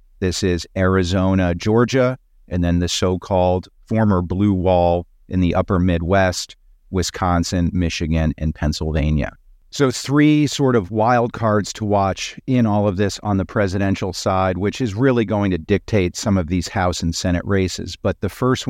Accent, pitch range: American, 90-110 Hz